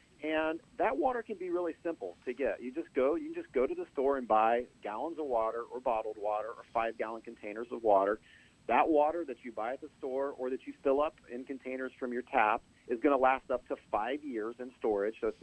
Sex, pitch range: male, 115-155 Hz